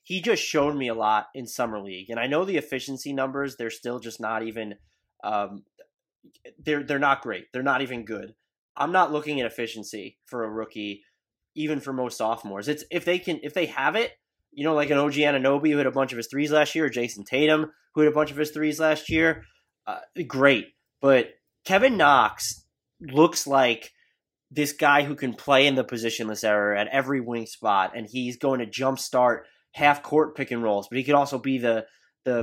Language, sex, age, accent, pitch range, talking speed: English, male, 20-39, American, 115-150 Hz, 205 wpm